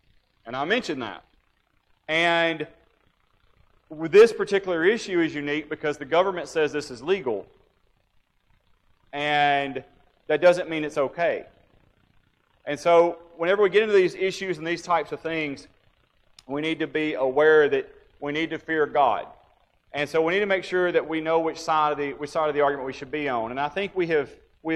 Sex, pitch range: male, 135-165 Hz